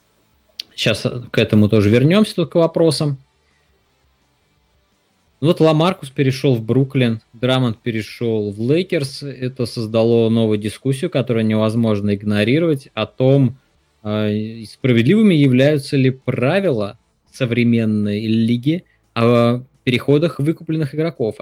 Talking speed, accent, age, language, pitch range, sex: 100 wpm, native, 20-39, Russian, 105-135 Hz, male